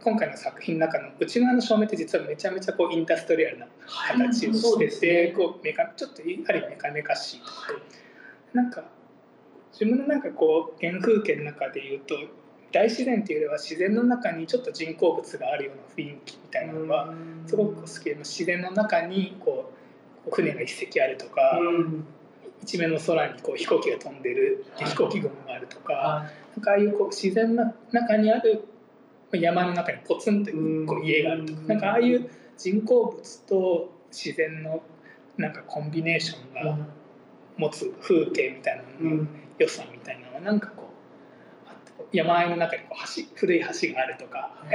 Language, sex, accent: Japanese, male, native